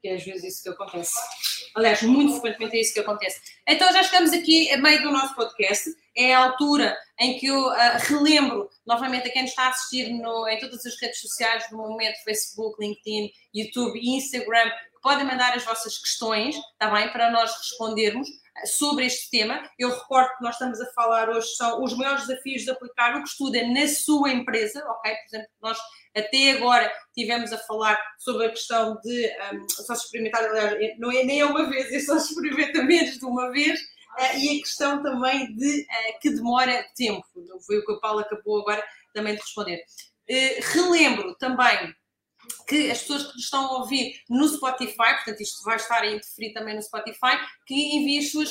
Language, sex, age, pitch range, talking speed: Portuguese, female, 20-39, 225-280 Hz, 195 wpm